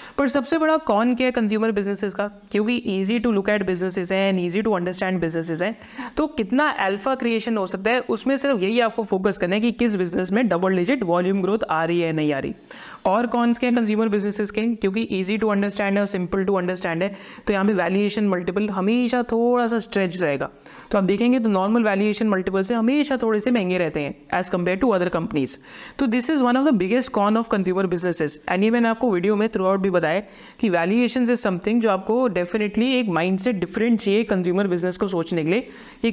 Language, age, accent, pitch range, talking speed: Hindi, 30-49, native, 185-235 Hz, 225 wpm